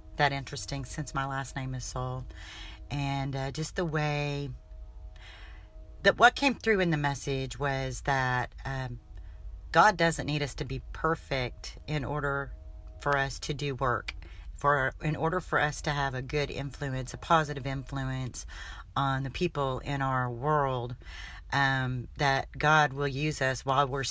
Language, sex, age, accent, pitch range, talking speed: English, female, 40-59, American, 130-160 Hz, 160 wpm